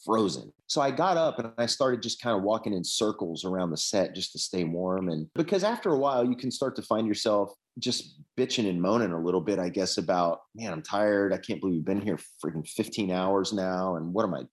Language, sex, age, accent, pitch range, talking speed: English, male, 30-49, American, 95-120 Hz, 245 wpm